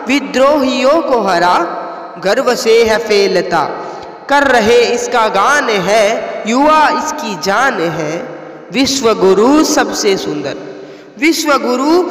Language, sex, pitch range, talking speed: Hindi, female, 245-310 Hz, 100 wpm